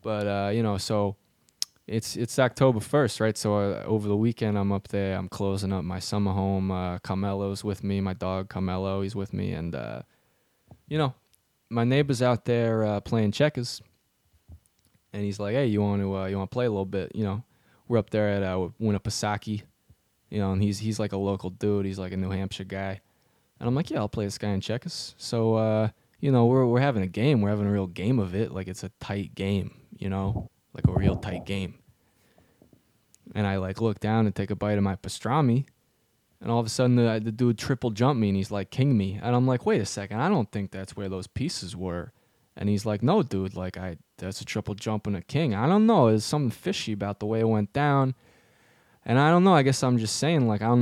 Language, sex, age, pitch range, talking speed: English, male, 20-39, 95-120 Hz, 235 wpm